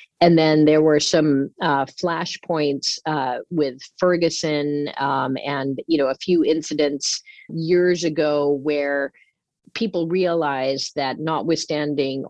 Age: 40-59